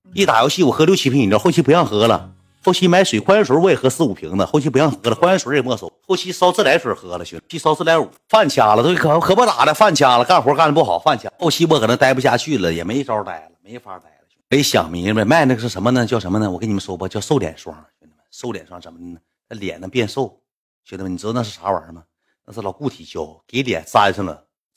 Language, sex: Chinese, male